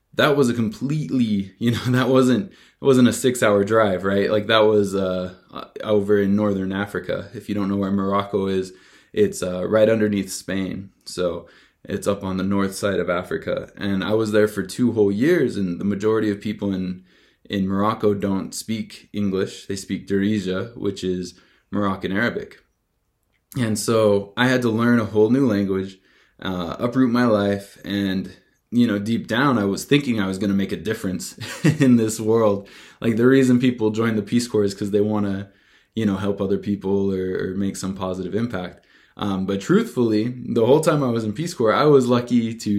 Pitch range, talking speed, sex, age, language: 95-110 Hz, 195 wpm, male, 20-39, English